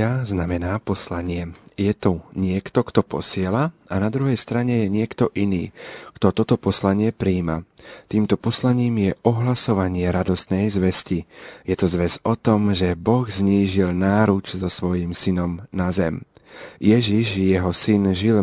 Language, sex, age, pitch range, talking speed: Slovak, male, 40-59, 90-105 Hz, 135 wpm